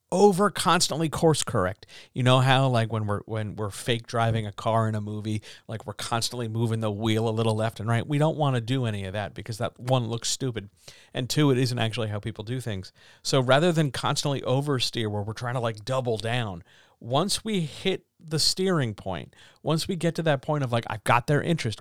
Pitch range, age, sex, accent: 110-145 Hz, 50-69, male, American